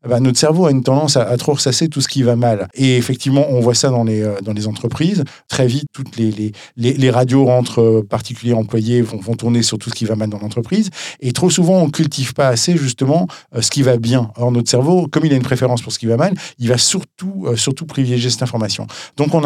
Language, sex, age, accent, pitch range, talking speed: French, male, 50-69, French, 115-145 Hz, 250 wpm